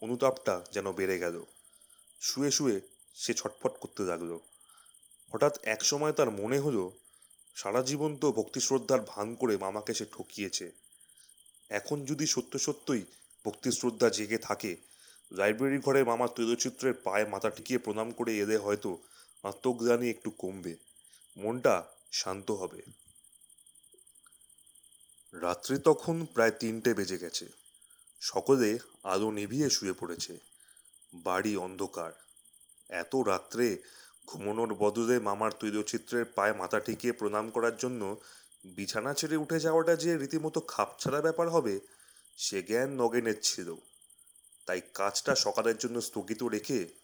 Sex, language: male, Bengali